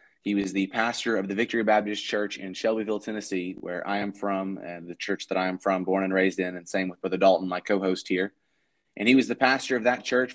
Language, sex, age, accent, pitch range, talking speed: English, male, 20-39, American, 95-110 Hz, 250 wpm